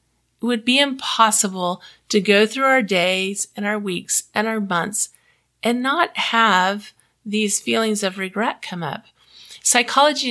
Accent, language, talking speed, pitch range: American, English, 145 wpm, 185-230 Hz